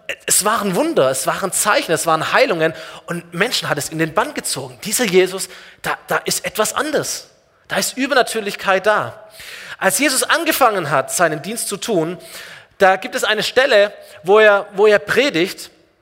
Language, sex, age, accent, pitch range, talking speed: German, male, 30-49, German, 165-230 Hz, 170 wpm